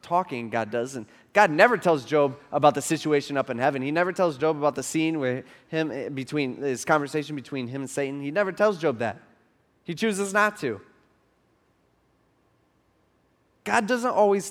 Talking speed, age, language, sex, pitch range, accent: 175 wpm, 20-39, English, male, 125-180 Hz, American